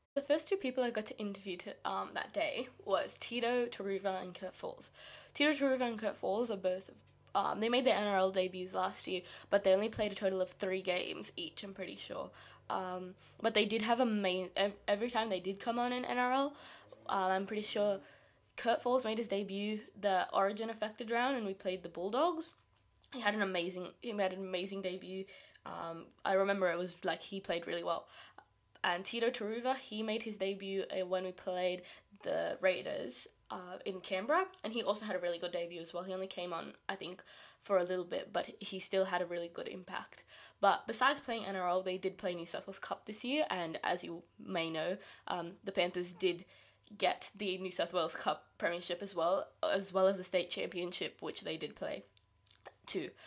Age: 10-29